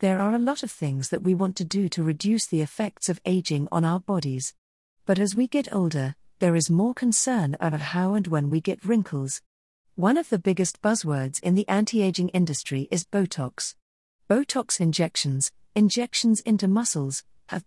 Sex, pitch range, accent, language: female, 155-210 Hz, British, English